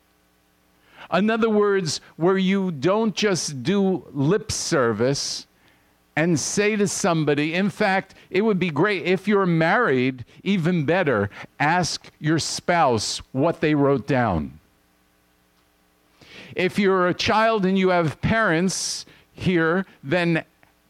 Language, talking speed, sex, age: English, 120 wpm, male, 50-69